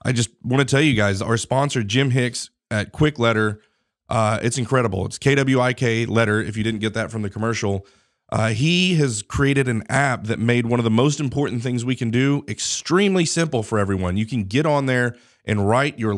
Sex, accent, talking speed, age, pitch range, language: male, American, 210 wpm, 30-49, 110-130 Hz, English